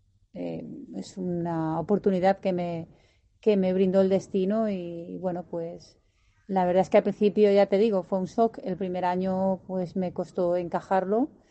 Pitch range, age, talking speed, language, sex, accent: 170-200 Hz, 30-49, 165 wpm, Spanish, female, Spanish